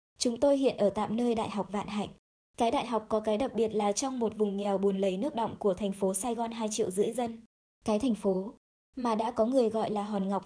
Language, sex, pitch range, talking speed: Vietnamese, male, 200-240 Hz, 265 wpm